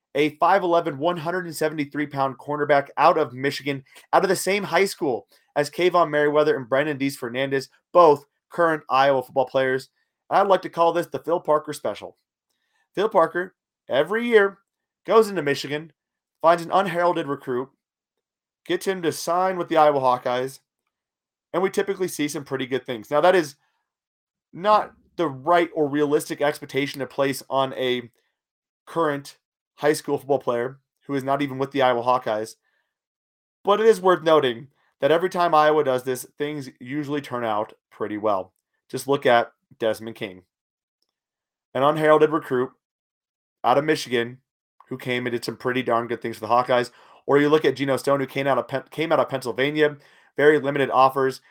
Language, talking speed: English, 165 wpm